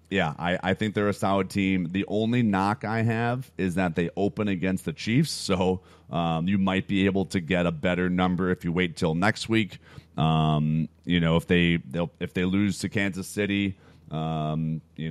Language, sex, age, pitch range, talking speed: English, male, 30-49, 80-100 Hz, 205 wpm